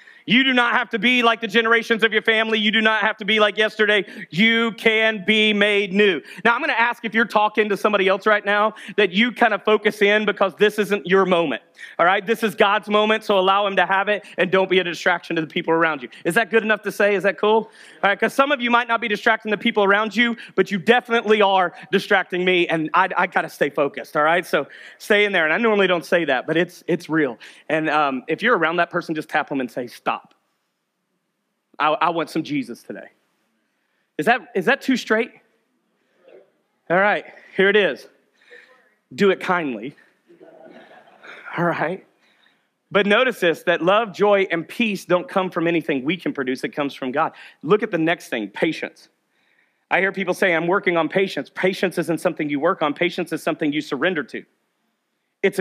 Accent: American